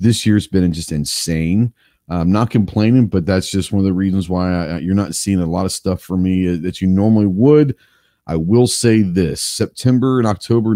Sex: male